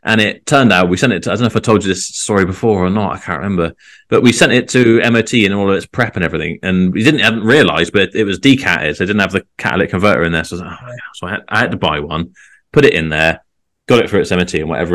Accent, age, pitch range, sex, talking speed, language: British, 20-39, 90-110 Hz, male, 300 wpm, English